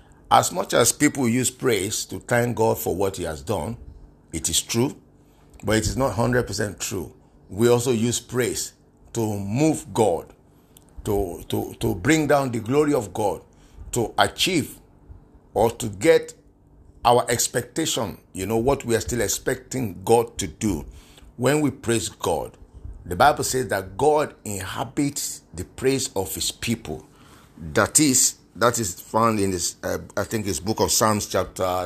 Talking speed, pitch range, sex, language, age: 160 wpm, 95-130 Hz, male, English, 50-69